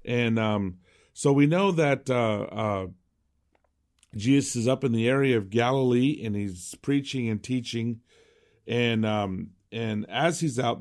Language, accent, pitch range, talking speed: English, American, 110-140 Hz, 150 wpm